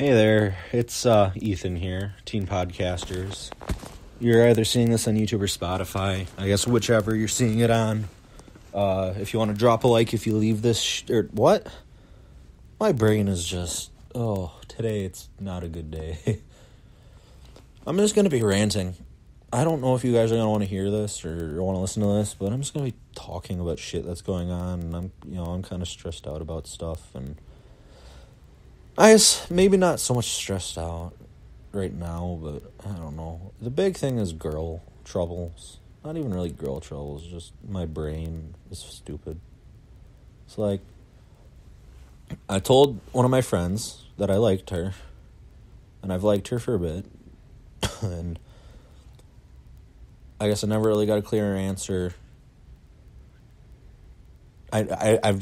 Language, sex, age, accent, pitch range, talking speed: English, male, 30-49, American, 85-110 Hz, 165 wpm